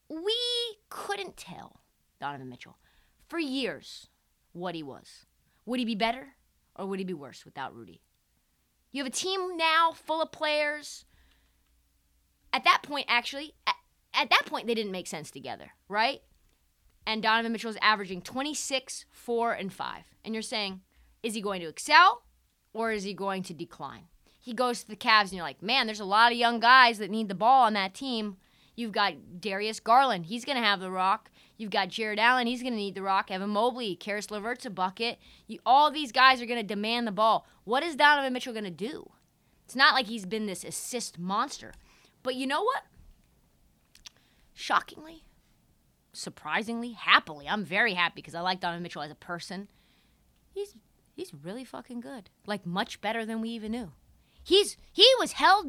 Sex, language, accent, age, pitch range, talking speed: female, English, American, 20-39, 190-265 Hz, 185 wpm